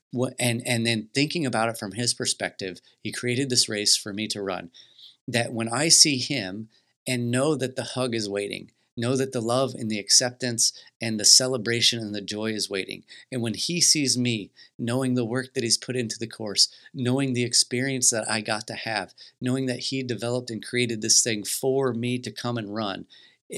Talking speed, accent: 205 wpm, American